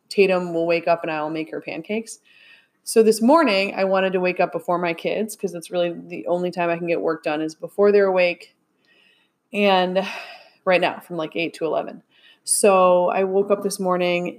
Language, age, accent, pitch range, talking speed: English, 20-39, American, 175-205 Hz, 205 wpm